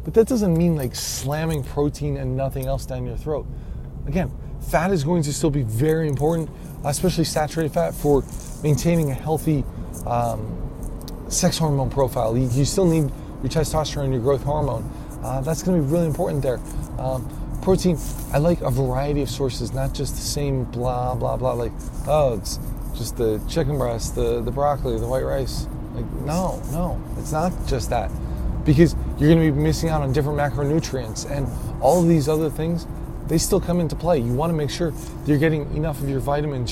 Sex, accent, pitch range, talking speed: male, American, 125-155 Hz, 190 wpm